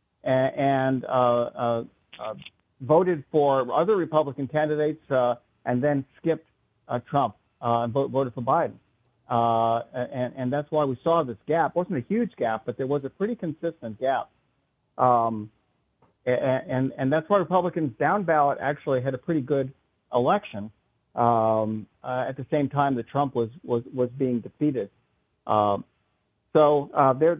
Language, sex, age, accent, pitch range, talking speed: English, male, 50-69, American, 120-155 Hz, 160 wpm